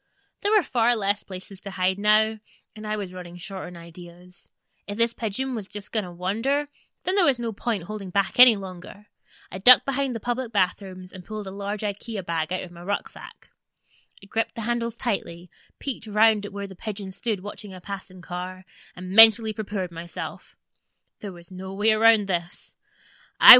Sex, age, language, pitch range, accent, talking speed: female, 20-39, English, 185-230 Hz, British, 190 wpm